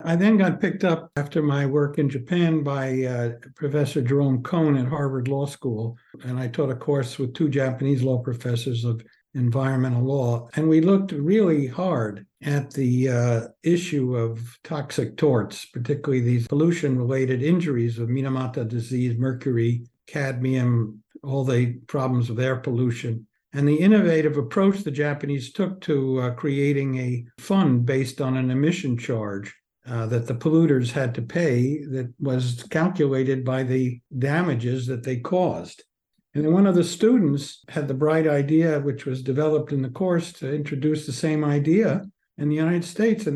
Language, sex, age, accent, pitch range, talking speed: English, male, 60-79, American, 125-155 Hz, 165 wpm